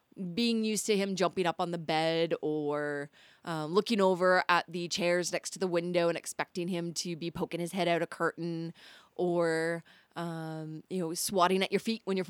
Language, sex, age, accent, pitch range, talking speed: English, female, 20-39, American, 180-240 Hz, 200 wpm